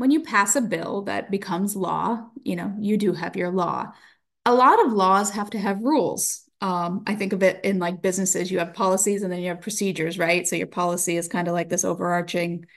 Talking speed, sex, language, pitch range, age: 230 wpm, female, English, 180-210 Hz, 30-49